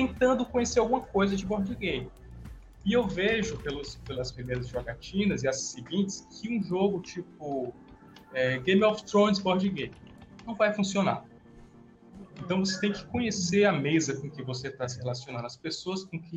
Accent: Brazilian